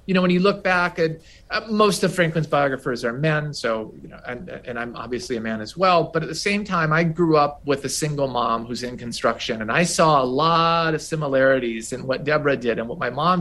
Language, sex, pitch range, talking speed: English, male, 120-165 Hz, 245 wpm